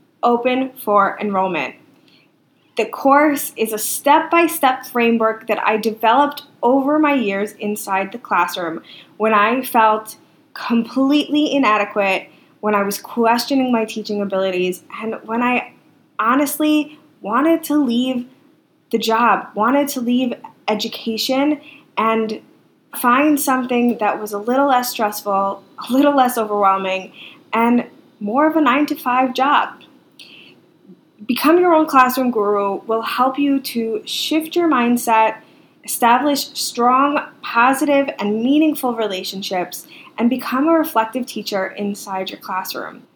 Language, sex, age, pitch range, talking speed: English, female, 20-39, 215-285 Hz, 120 wpm